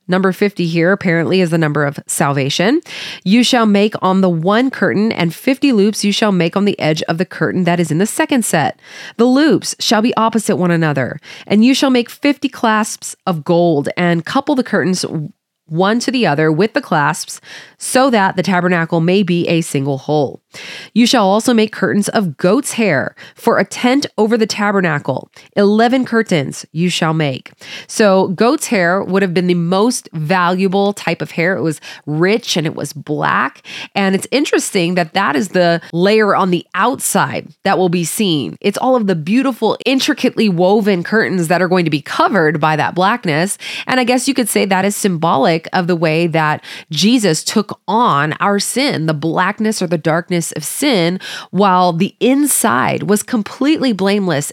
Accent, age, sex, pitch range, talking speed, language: American, 30-49, female, 170-225 Hz, 185 wpm, English